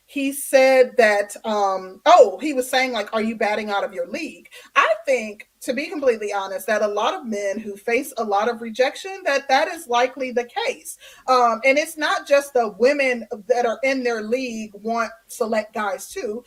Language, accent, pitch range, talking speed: English, American, 220-275 Hz, 200 wpm